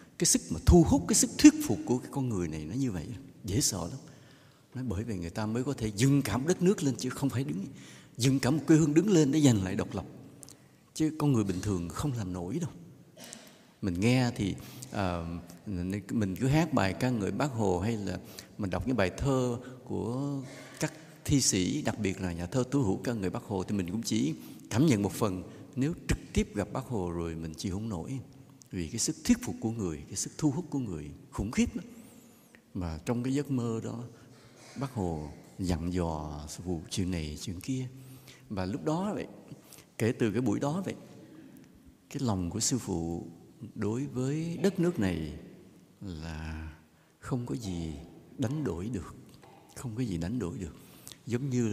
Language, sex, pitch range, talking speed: English, male, 90-135 Hz, 205 wpm